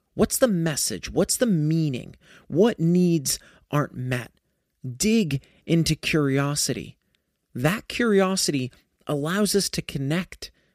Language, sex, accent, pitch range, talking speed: English, male, American, 140-200 Hz, 105 wpm